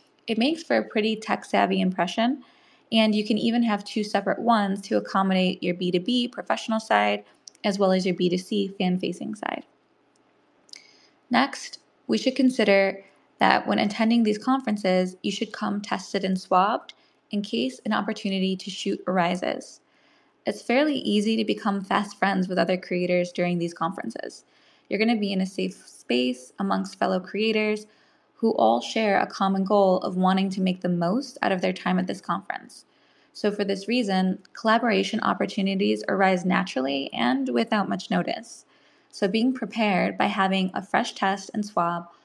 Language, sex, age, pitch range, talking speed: English, female, 20-39, 185-220 Hz, 160 wpm